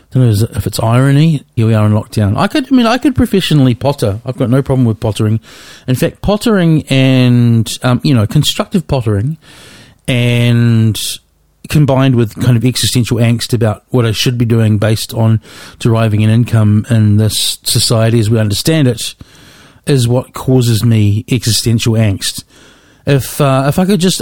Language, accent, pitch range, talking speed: English, Australian, 110-135 Hz, 170 wpm